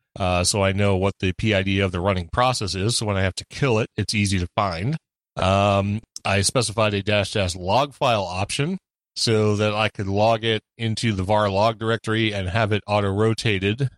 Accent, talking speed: American, 205 wpm